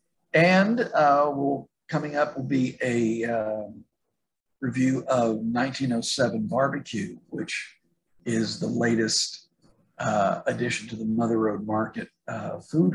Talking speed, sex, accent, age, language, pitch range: 115 wpm, male, American, 60-79, English, 110-140 Hz